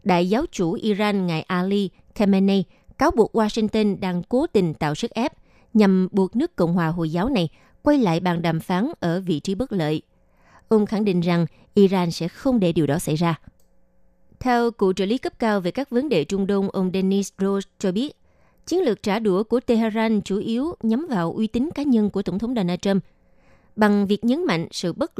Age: 20-39